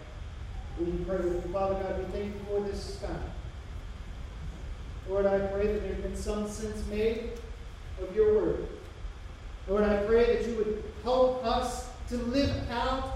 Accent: American